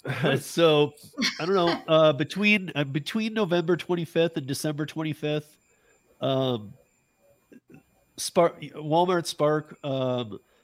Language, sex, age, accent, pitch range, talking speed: English, male, 50-69, American, 125-150 Hz, 100 wpm